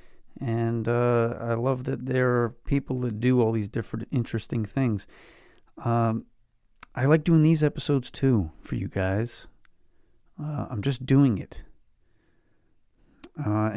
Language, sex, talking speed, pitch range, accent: English, male, 135 wpm, 100-125 Hz, American